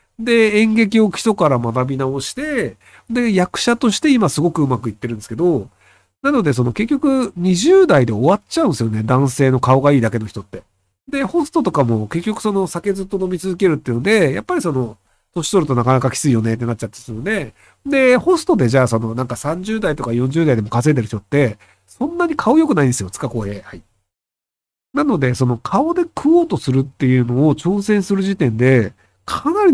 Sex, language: male, Japanese